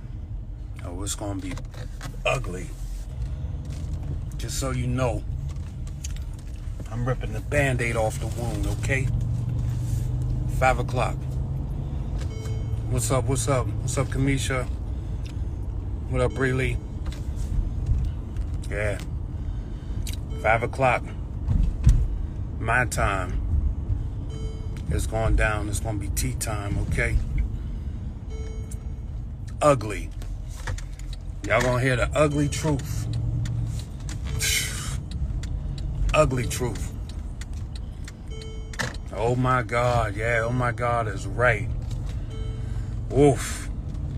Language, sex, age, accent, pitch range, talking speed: English, male, 30-49, American, 95-120 Hz, 90 wpm